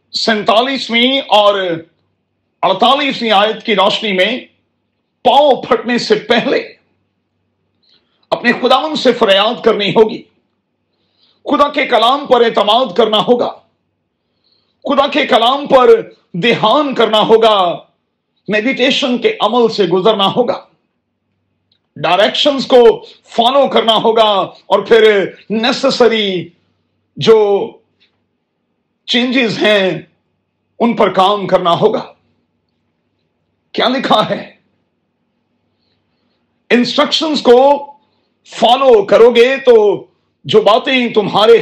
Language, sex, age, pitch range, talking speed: Urdu, male, 50-69, 200-260 Hz, 95 wpm